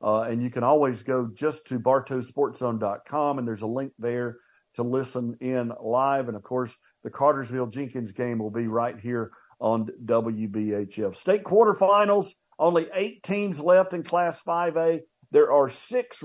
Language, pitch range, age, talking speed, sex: English, 125-160 Hz, 50-69, 160 wpm, male